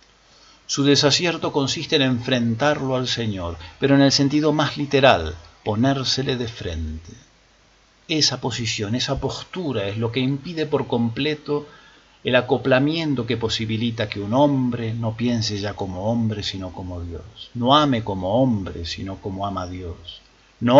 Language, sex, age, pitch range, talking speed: Spanish, male, 50-69, 100-135 Hz, 145 wpm